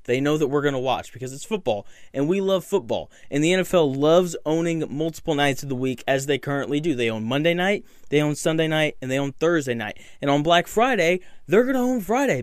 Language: English